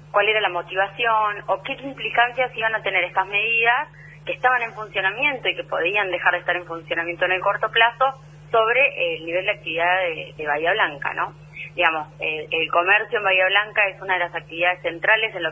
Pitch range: 160-205 Hz